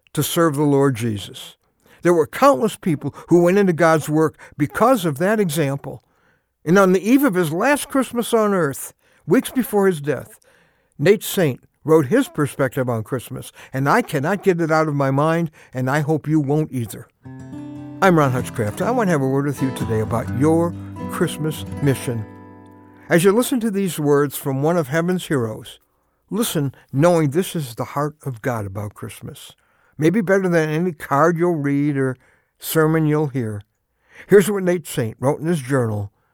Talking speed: 180 wpm